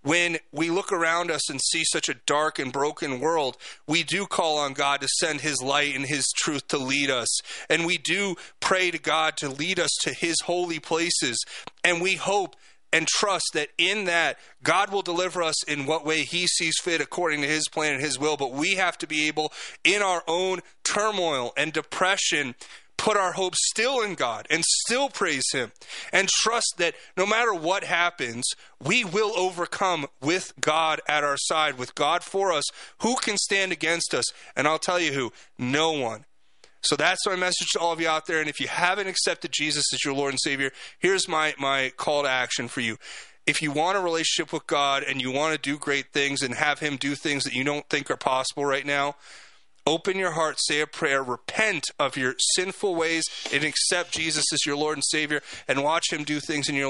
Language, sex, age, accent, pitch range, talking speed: English, male, 30-49, American, 145-175 Hz, 210 wpm